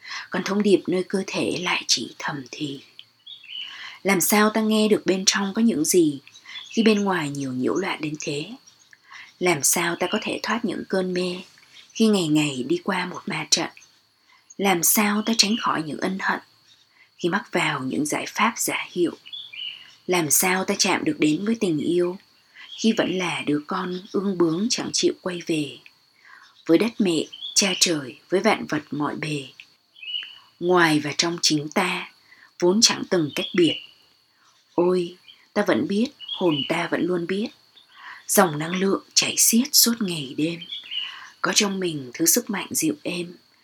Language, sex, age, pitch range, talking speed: Vietnamese, female, 20-39, 165-210 Hz, 175 wpm